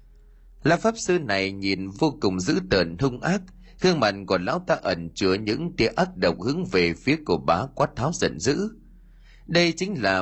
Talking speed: 200 wpm